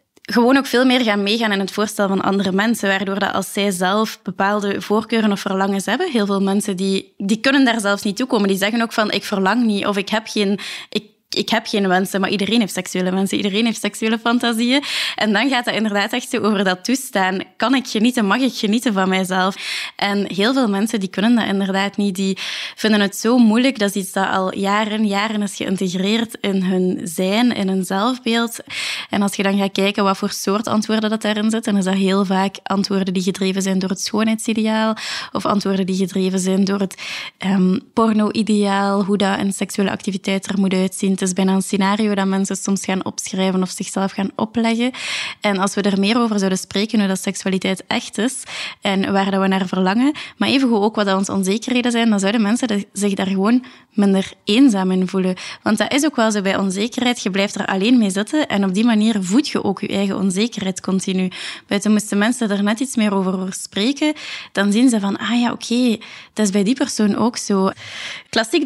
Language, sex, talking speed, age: Dutch, female, 215 wpm, 20-39